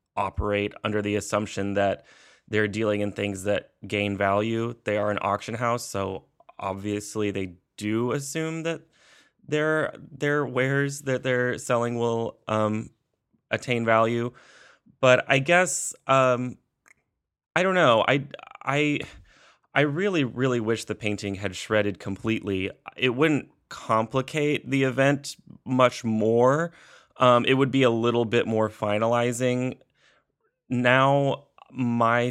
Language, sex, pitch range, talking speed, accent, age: English, male, 105-125 Hz, 130 wpm, American, 20-39